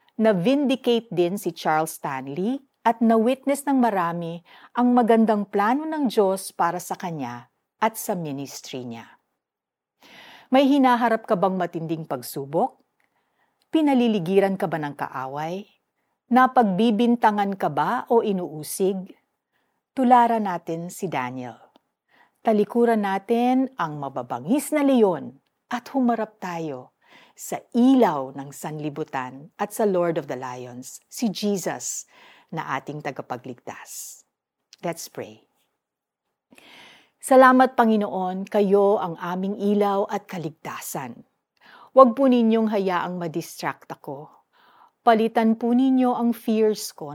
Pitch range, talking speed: 165-235 Hz, 110 wpm